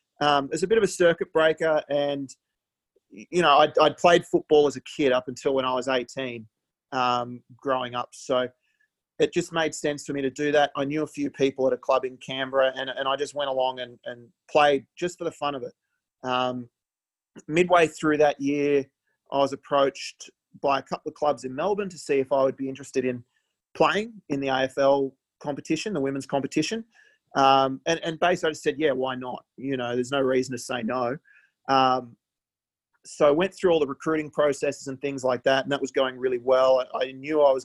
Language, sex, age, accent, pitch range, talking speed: English, male, 30-49, Australian, 130-155 Hz, 215 wpm